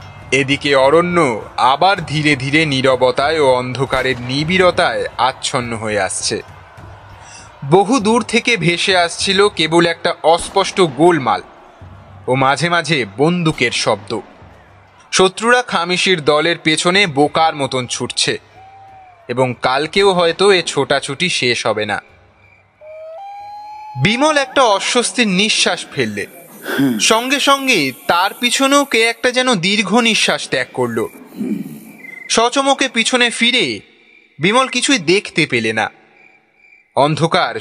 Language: Bengali